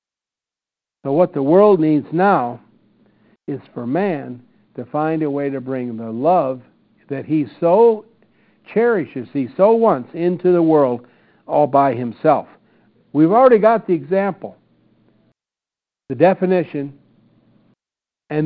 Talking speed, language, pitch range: 125 wpm, English, 130-180 Hz